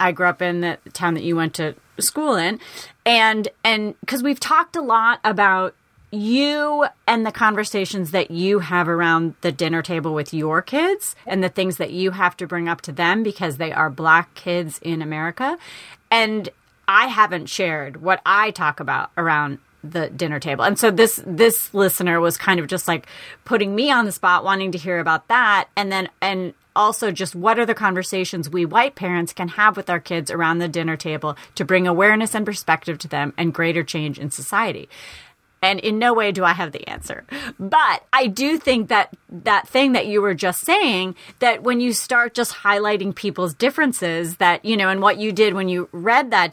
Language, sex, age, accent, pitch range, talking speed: English, female, 30-49, American, 170-235 Hz, 200 wpm